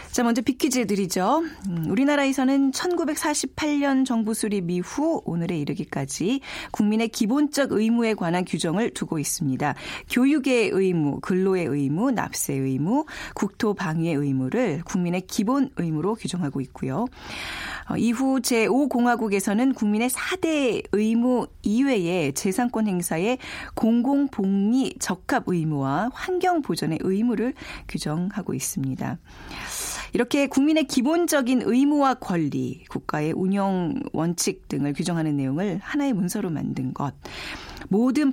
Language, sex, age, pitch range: Korean, female, 40-59, 165-260 Hz